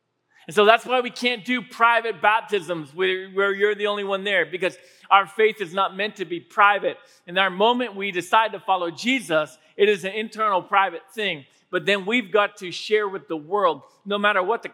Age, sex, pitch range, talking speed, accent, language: 40-59, male, 180-225 Hz, 210 wpm, American, English